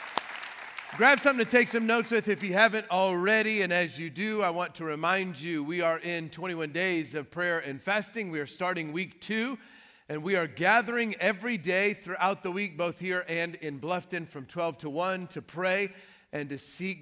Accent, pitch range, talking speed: American, 175-210 Hz, 200 wpm